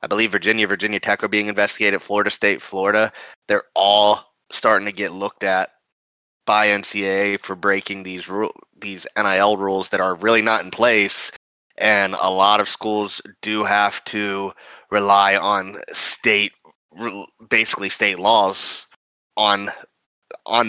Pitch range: 100-110 Hz